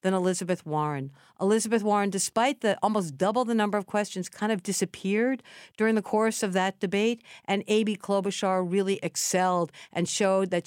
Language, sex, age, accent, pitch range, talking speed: English, female, 50-69, American, 175-210 Hz, 170 wpm